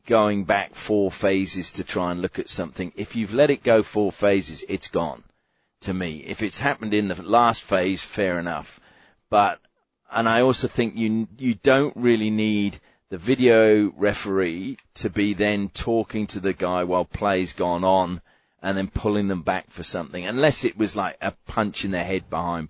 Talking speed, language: 190 wpm, English